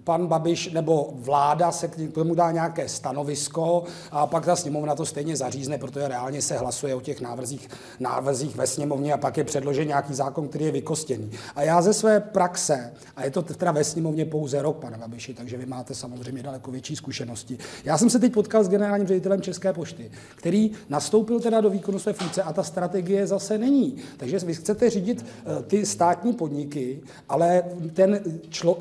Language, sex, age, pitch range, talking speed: Czech, male, 40-59, 145-200 Hz, 190 wpm